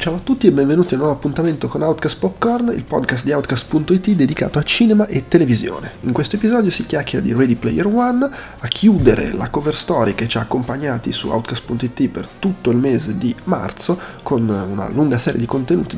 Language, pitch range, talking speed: Italian, 115-155 Hz, 200 wpm